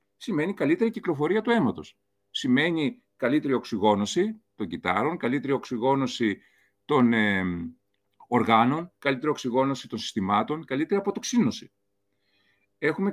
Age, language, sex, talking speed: 40-59, Greek, male, 100 wpm